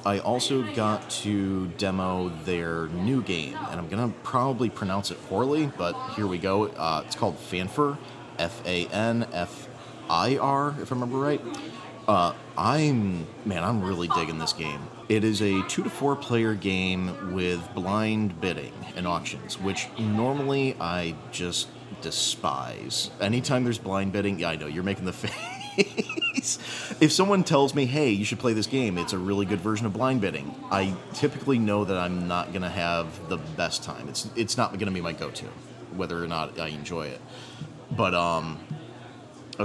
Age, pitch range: 30-49, 85-125 Hz